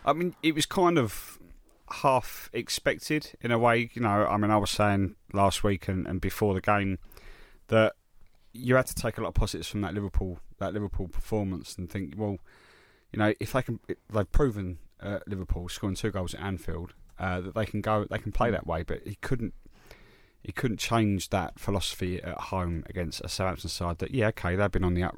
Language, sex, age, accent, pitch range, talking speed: English, male, 20-39, British, 90-110 Hz, 210 wpm